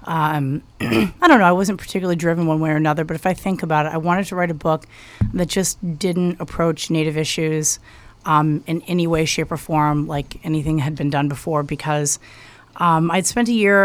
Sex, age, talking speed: female, 30-49, 210 wpm